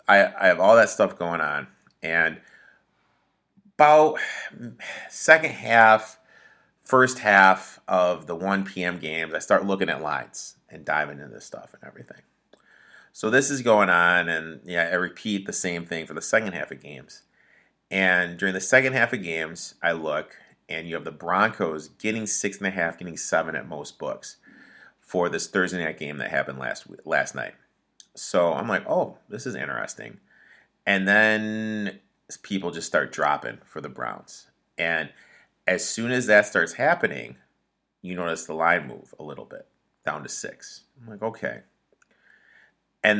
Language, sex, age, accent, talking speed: English, male, 30-49, American, 170 wpm